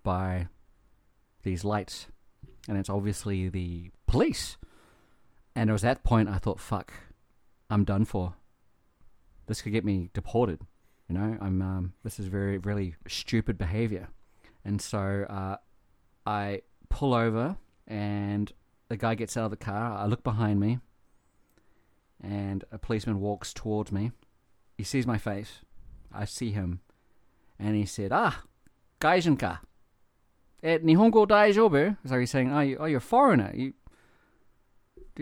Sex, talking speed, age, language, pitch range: male, 140 wpm, 30-49, English, 100-125 Hz